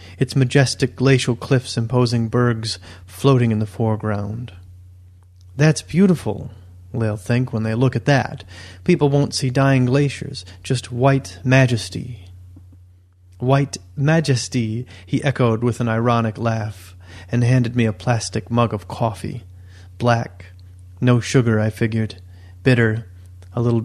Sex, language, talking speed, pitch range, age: male, English, 130 wpm, 95-130 Hz, 30-49